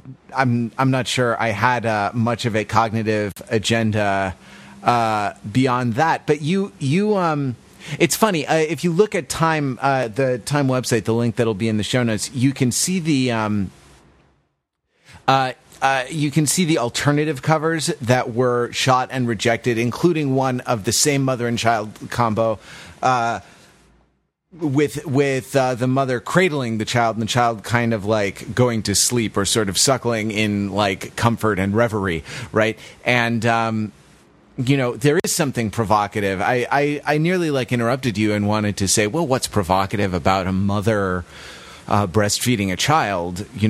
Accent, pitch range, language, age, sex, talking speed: American, 110-140 Hz, English, 30-49, male, 170 wpm